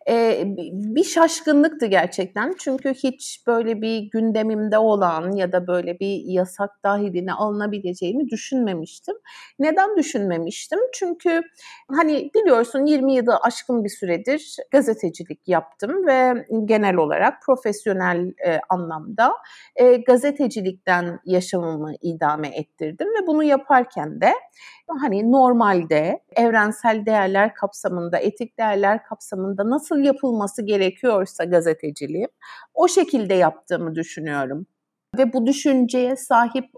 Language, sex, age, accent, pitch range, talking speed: Turkish, female, 60-79, native, 185-270 Hz, 105 wpm